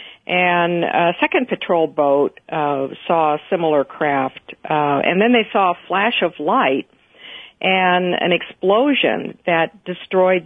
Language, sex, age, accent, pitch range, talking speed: English, female, 50-69, American, 155-190 Hz, 140 wpm